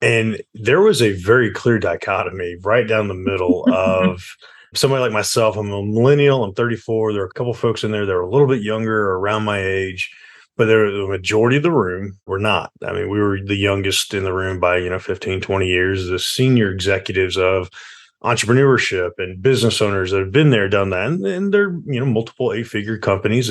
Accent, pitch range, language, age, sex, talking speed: American, 95-125 Hz, English, 30-49, male, 210 wpm